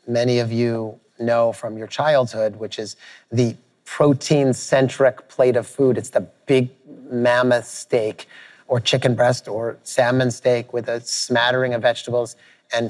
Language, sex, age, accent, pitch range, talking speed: English, male, 30-49, American, 125-150 Hz, 145 wpm